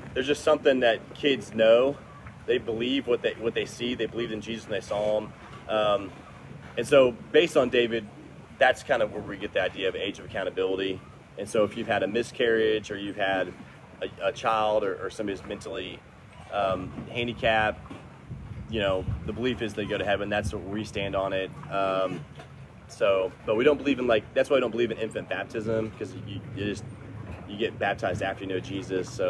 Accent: American